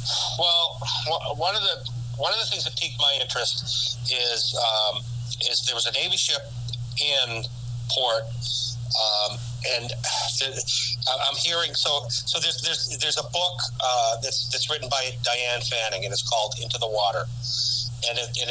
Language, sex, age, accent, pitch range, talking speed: English, male, 50-69, American, 120-125 Hz, 155 wpm